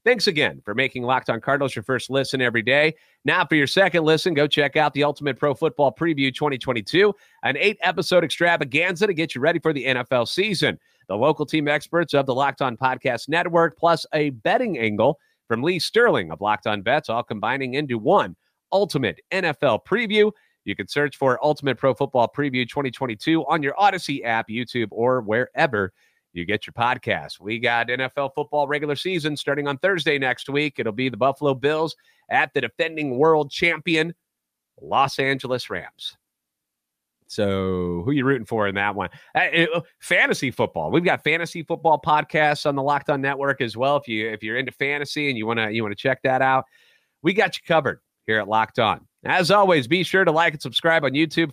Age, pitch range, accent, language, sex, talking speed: 30-49, 130-165 Hz, American, English, male, 190 wpm